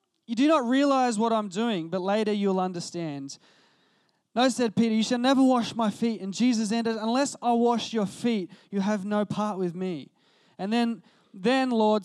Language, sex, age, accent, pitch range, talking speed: English, male, 20-39, Australian, 165-220 Hz, 190 wpm